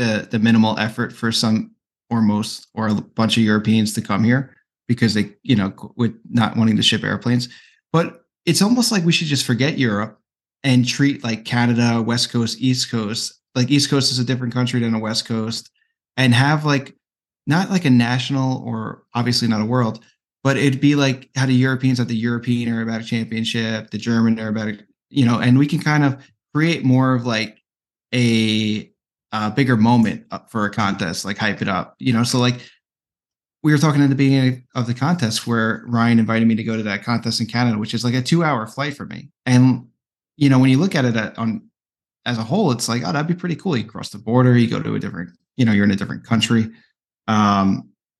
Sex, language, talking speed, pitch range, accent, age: male, English, 215 wpm, 110-130 Hz, American, 20-39